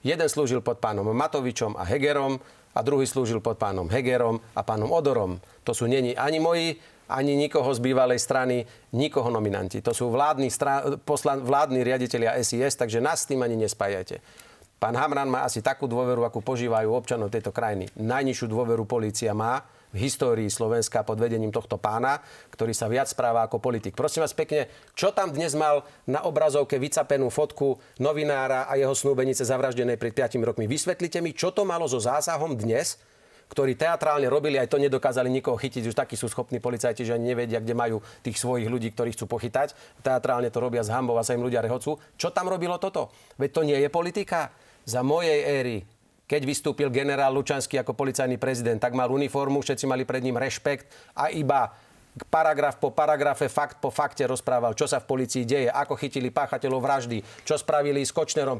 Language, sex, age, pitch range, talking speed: Slovak, male, 40-59, 120-150 Hz, 185 wpm